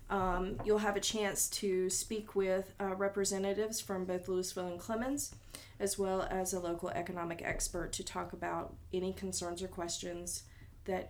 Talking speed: 160 wpm